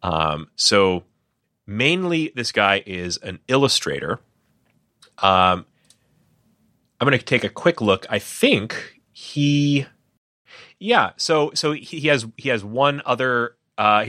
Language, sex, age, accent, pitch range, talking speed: English, male, 30-49, American, 95-145 Hz, 125 wpm